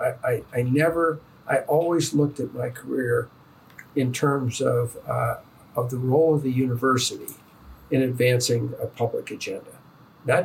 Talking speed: 150 wpm